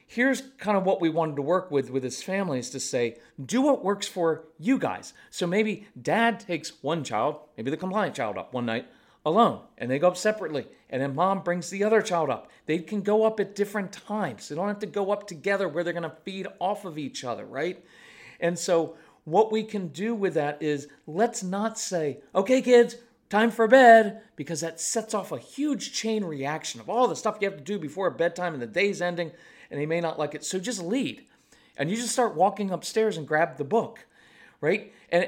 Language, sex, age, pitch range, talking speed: English, male, 40-59, 155-215 Hz, 225 wpm